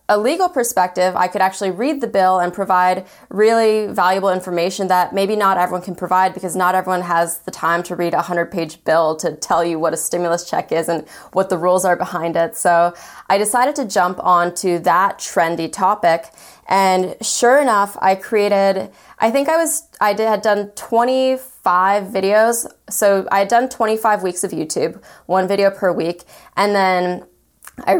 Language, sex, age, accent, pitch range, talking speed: English, female, 20-39, American, 180-210 Hz, 185 wpm